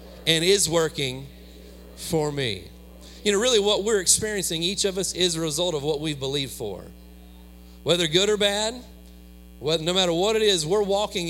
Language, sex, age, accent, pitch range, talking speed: English, male, 40-59, American, 120-180 Hz, 185 wpm